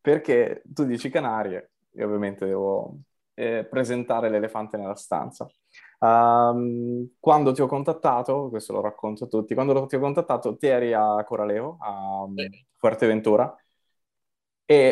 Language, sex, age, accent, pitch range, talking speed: Italian, male, 20-39, native, 110-135 Hz, 135 wpm